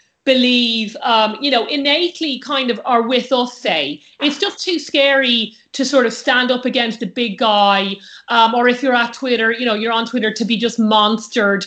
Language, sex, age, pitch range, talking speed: English, female, 40-59, 230-305 Hz, 200 wpm